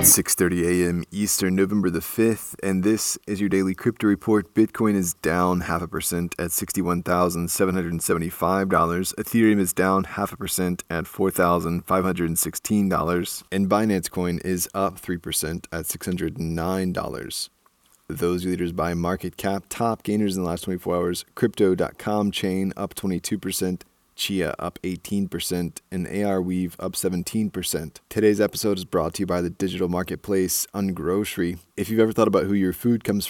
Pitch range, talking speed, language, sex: 90-100 Hz, 150 wpm, English, male